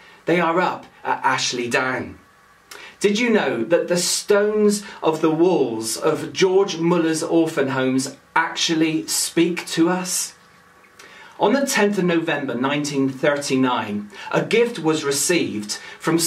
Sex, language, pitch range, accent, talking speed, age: male, English, 155-195 Hz, British, 130 wpm, 40-59